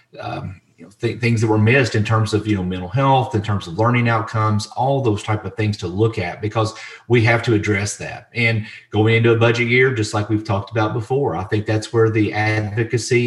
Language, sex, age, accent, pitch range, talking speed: English, male, 30-49, American, 105-115 Hz, 235 wpm